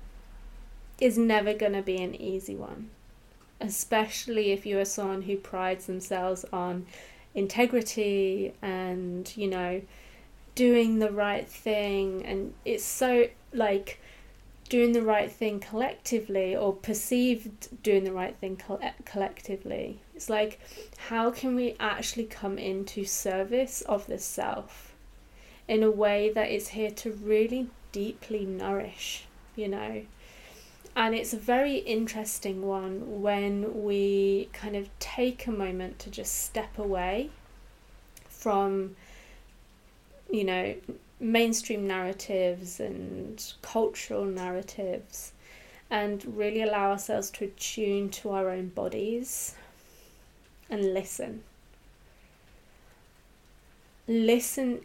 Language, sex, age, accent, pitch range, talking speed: English, female, 30-49, British, 190-225 Hz, 115 wpm